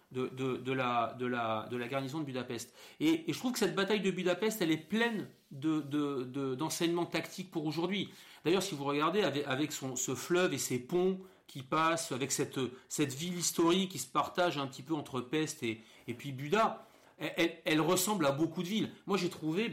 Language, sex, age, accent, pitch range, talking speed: French, male, 40-59, French, 130-180 Hz, 220 wpm